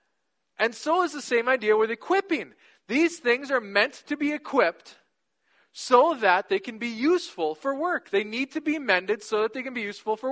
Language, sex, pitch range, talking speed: English, male, 215-310 Hz, 205 wpm